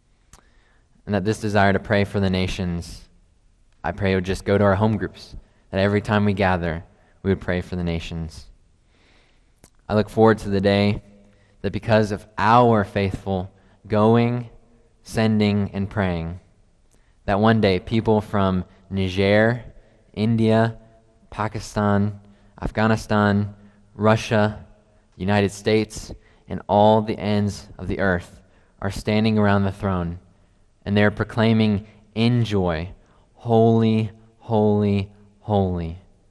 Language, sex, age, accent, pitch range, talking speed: English, male, 20-39, American, 90-105 Hz, 130 wpm